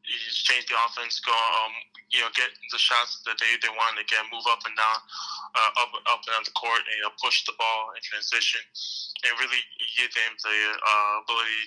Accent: American